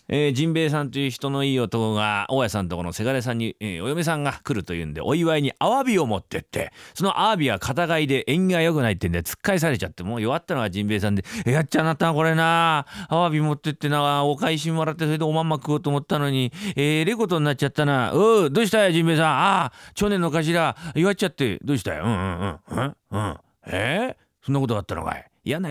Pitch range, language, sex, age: 120-165 Hz, Japanese, male, 40-59